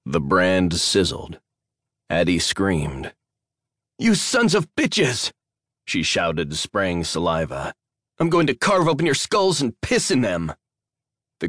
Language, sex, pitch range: English, male, 90-115 Hz